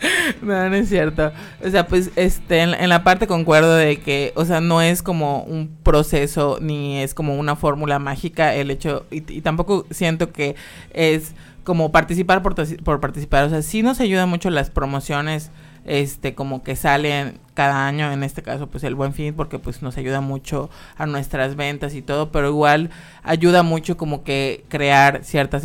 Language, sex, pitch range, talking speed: Spanish, male, 140-165 Hz, 185 wpm